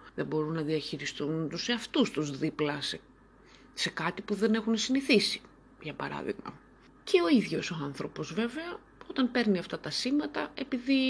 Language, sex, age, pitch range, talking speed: Greek, female, 30-49, 150-245 Hz, 155 wpm